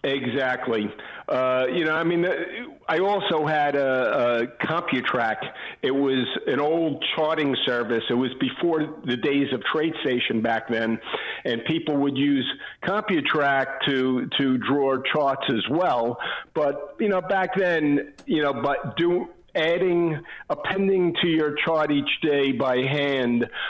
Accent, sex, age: American, male, 50-69